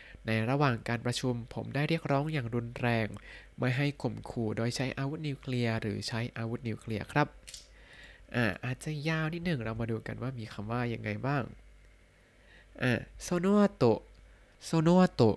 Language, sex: Thai, male